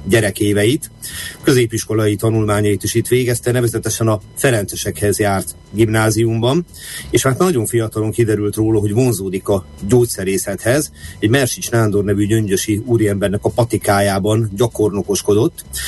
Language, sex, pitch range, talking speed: Hungarian, male, 100-120 Hz, 115 wpm